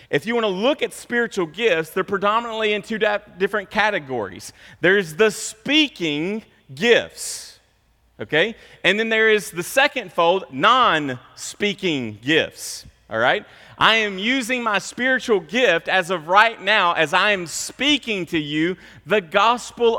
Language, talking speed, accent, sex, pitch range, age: English, 140 wpm, American, male, 170-215 Hz, 30-49